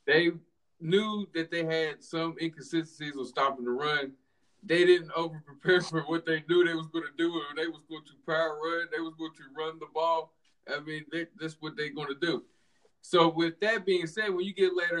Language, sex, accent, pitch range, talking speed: English, male, American, 160-195 Hz, 210 wpm